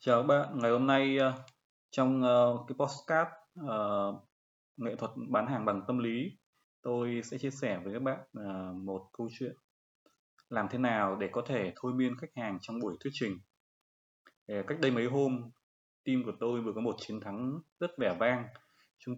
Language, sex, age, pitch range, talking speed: Vietnamese, male, 20-39, 105-135 Hz, 175 wpm